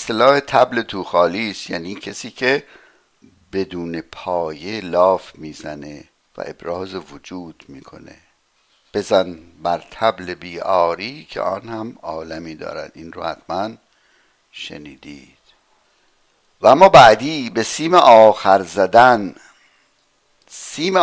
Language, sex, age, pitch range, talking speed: Persian, male, 60-79, 85-135 Hz, 105 wpm